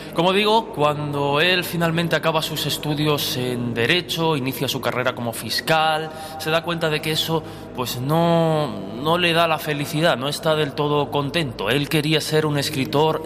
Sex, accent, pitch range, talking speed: male, Spanish, 130-160 Hz, 170 wpm